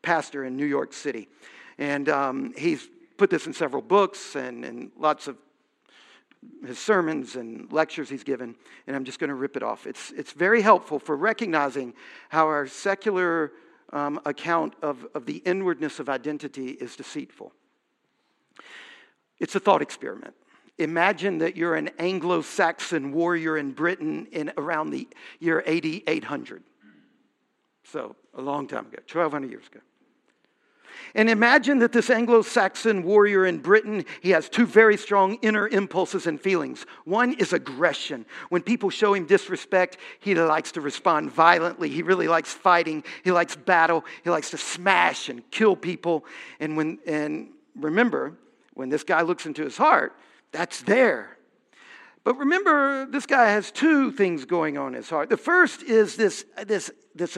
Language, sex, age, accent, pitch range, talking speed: English, male, 50-69, American, 155-225 Hz, 155 wpm